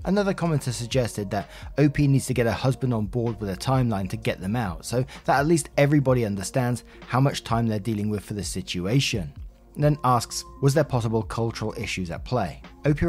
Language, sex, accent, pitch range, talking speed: English, male, British, 105-140 Hz, 205 wpm